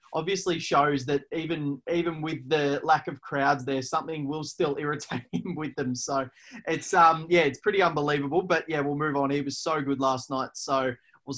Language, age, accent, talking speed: English, 20-39, Australian, 200 wpm